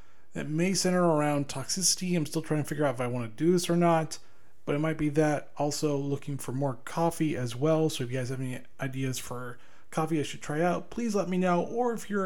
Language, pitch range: English, 130-165 Hz